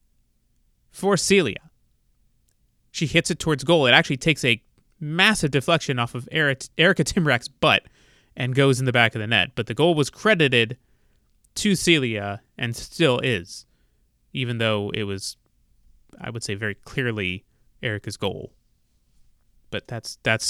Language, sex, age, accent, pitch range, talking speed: English, male, 20-39, American, 110-140 Hz, 145 wpm